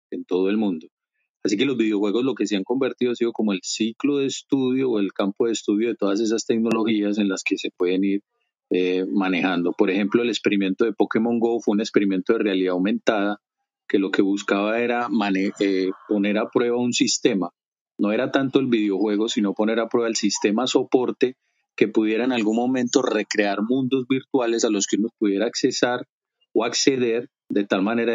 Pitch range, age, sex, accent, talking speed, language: 100-120 Hz, 40-59, male, Colombian, 195 wpm, Spanish